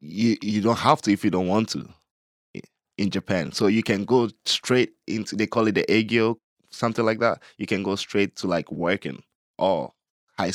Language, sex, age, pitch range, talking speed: English, male, 10-29, 90-110 Hz, 200 wpm